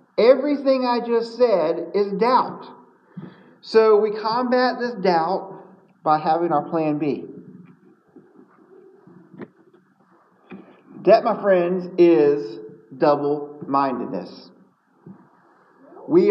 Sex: male